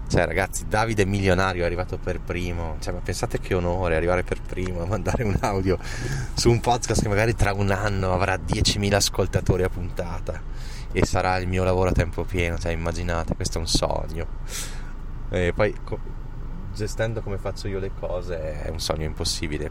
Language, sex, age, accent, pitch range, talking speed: Italian, male, 20-39, native, 80-100 Hz, 185 wpm